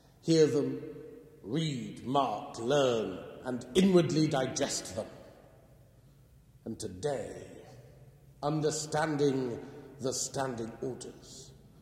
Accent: British